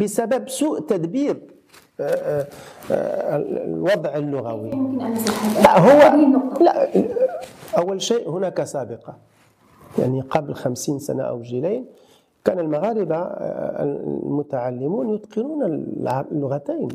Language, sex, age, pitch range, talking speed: French, male, 50-69, 145-220 Hz, 80 wpm